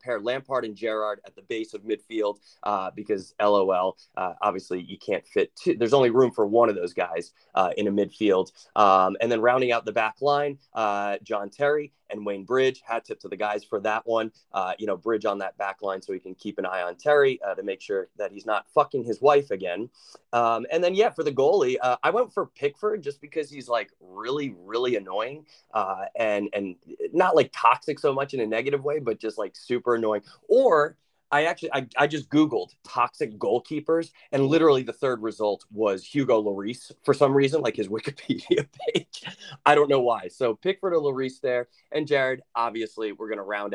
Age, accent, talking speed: 20-39, American, 215 wpm